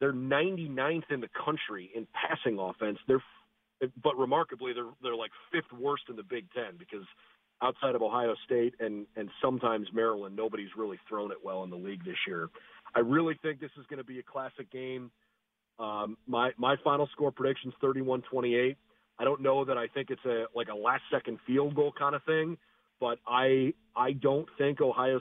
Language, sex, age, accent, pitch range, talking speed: English, male, 40-59, American, 120-145 Hz, 190 wpm